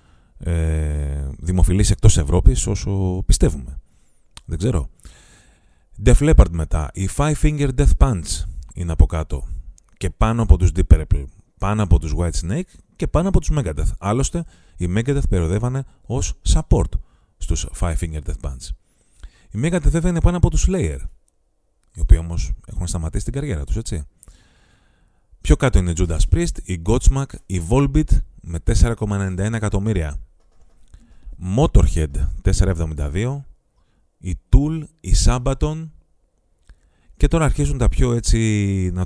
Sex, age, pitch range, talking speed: male, 30-49, 80-105 Hz, 135 wpm